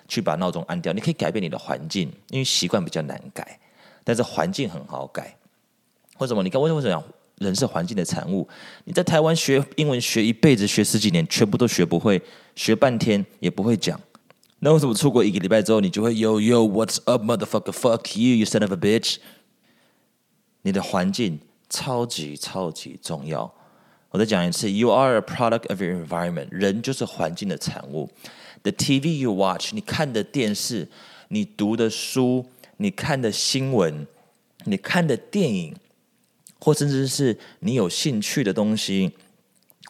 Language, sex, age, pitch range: Chinese, male, 20-39, 100-145 Hz